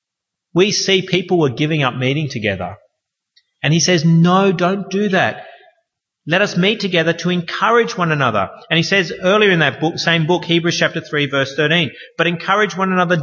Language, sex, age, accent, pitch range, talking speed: English, male, 30-49, Australian, 155-190 Hz, 185 wpm